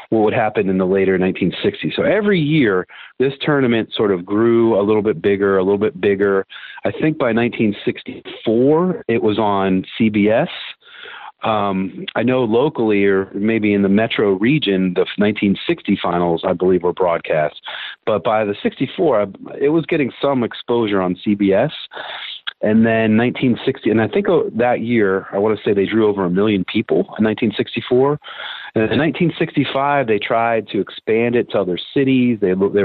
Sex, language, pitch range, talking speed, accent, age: male, English, 95-120 Hz, 170 wpm, American, 40-59